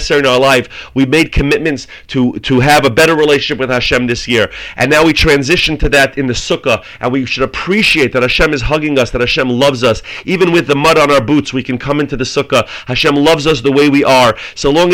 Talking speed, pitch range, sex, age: 240 wpm, 125-150 Hz, male, 40-59